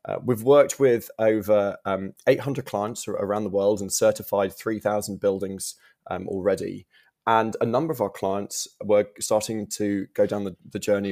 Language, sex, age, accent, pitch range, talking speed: Italian, male, 20-39, British, 100-115 Hz, 165 wpm